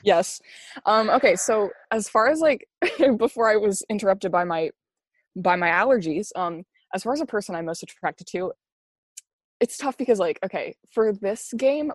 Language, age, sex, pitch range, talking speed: English, 20-39, female, 180-235 Hz, 175 wpm